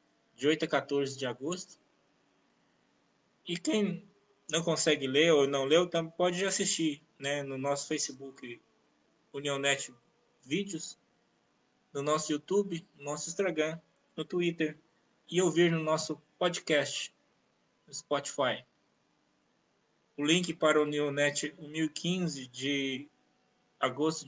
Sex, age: male, 20-39